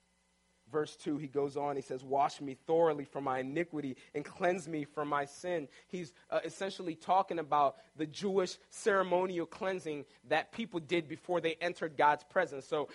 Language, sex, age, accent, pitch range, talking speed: English, male, 30-49, American, 170-225 Hz, 170 wpm